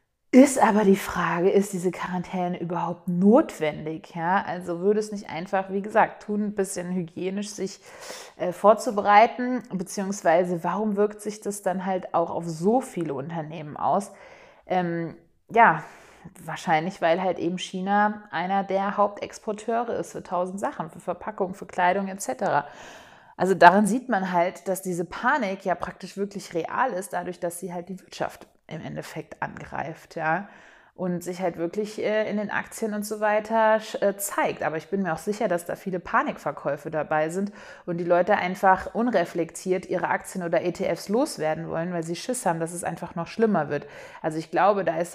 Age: 30-49